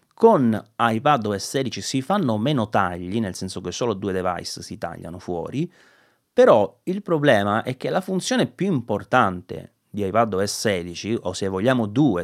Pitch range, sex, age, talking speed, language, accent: 95-125 Hz, male, 30-49, 155 wpm, Italian, native